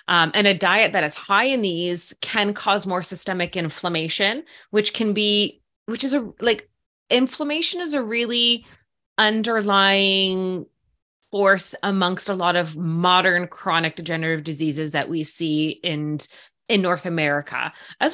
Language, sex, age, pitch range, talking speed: English, female, 20-39, 170-210 Hz, 140 wpm